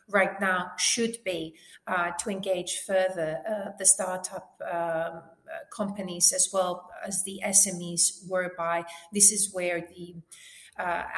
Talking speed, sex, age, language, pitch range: 130 wpm, female, 40-59, English, 180-205 Hz